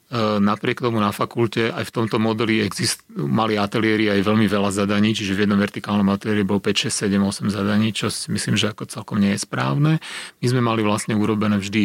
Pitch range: 100-115 Hz